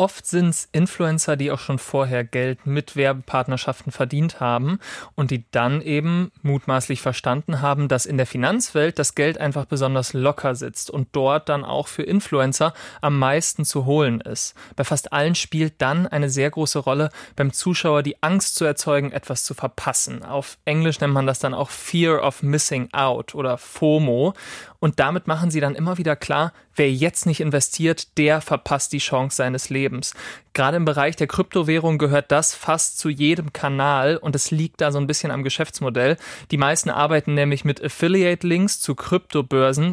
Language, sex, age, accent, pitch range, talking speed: German, male, 30-49, German, 140-160 Hz, 175 wpm